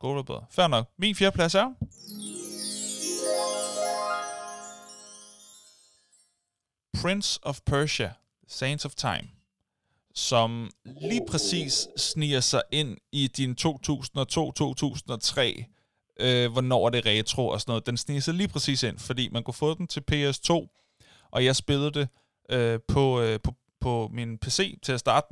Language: Danish